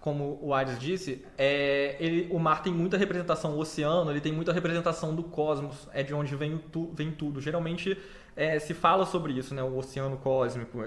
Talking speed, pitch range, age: 200 wpm, 155-190 Hz, 20-39